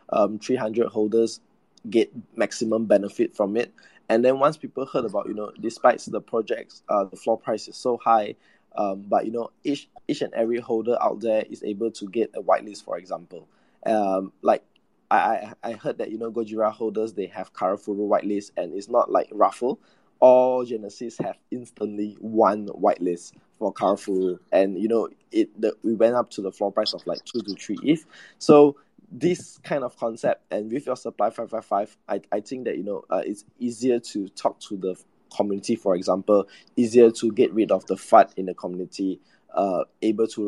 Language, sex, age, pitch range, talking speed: English, male, 20-39, 100-115 Hz, 195 wpm